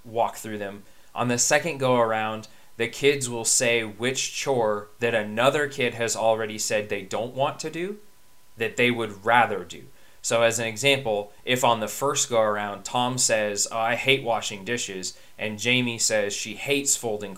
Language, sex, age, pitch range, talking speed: English, male, 20-39, 105-125 Hz, 180 wpm